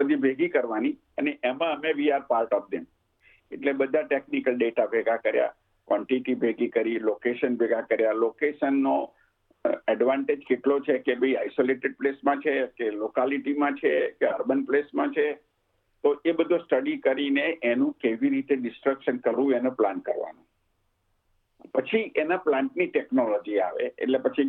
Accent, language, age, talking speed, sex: native, Gujarati, 50-69, 145 wpm, male